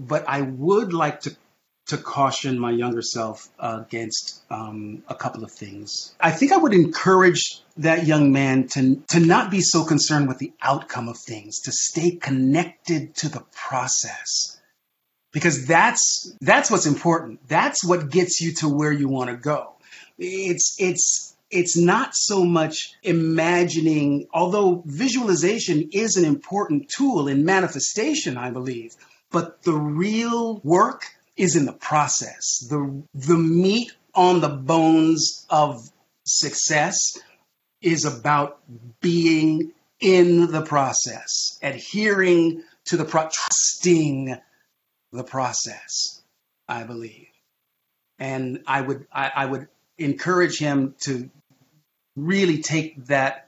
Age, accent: 40-59, American